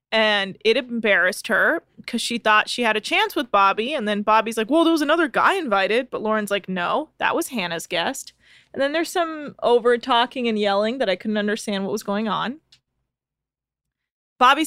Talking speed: 195 wpm